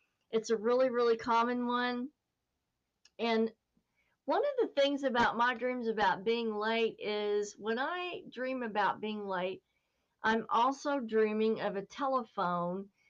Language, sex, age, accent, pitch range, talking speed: English, female, 50-69, American, 195-240 Hz, 140 wpm